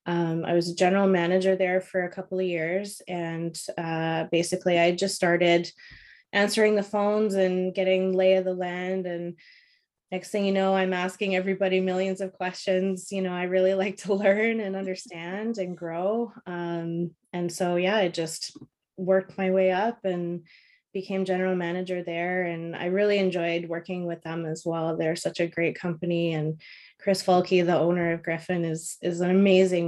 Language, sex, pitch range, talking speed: English, female, 170-195 Hz, 180 wpm